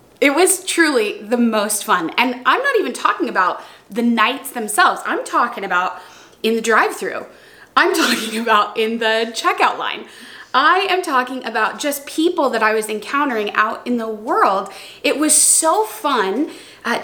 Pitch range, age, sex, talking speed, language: 220-325 Hz, 20-39, female, 165 wpm, English